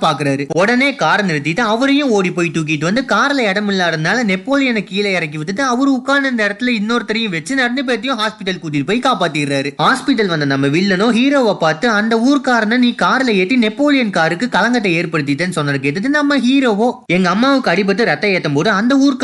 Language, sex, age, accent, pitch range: Tamil, male, 20-39, native, 175-245 Hz